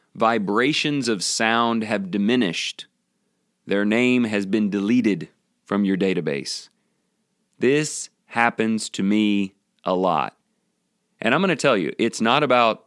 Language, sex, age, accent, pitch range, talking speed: English, male, 30-49, American, 100-150 Hz, 130 wpm